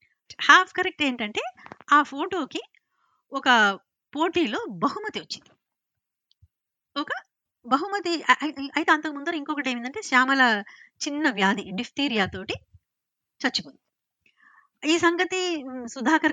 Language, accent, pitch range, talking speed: Telugu, native, 230-315 Hz, 85 wpm